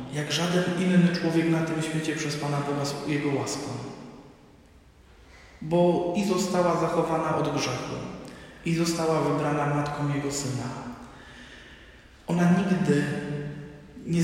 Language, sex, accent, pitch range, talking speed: Polish, male, native, 145-185 Hz, 120 wpm